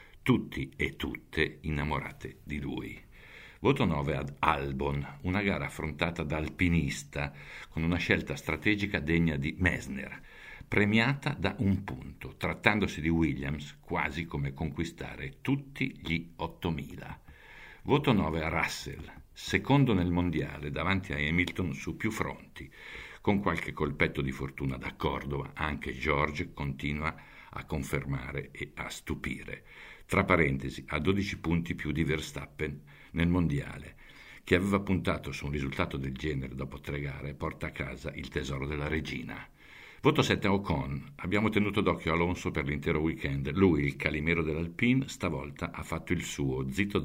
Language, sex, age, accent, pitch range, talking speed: Italian, male, 60-79, native, 70-90 Hz, 145 wpm